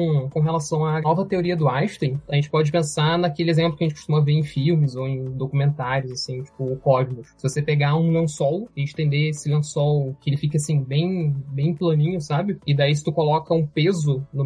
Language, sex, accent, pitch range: Portuguese, male, Brazilian, 145-170 Hz